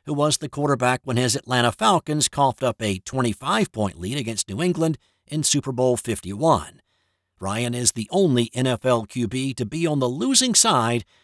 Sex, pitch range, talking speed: male, 115-180 Hz, 165 wpm